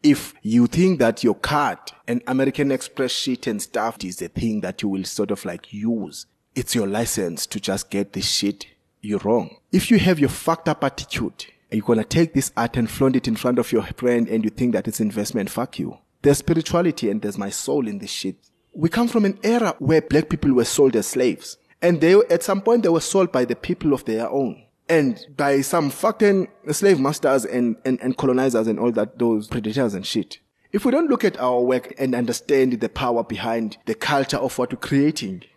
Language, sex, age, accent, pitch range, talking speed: English, male, 30-49, South African, 120-165 Hz, 225 wpm